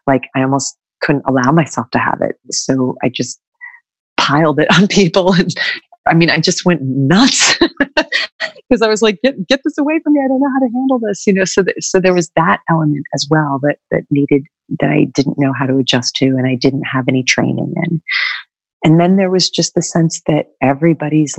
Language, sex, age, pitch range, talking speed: English, female, 40-59, 140-180 Hz, 220 wpm